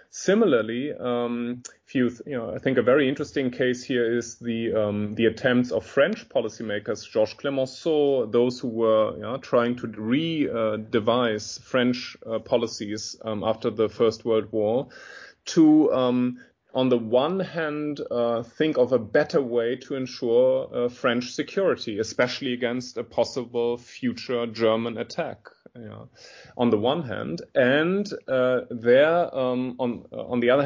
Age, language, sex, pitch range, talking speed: 30-49, English, male, 115-135 Hz, 155 wpm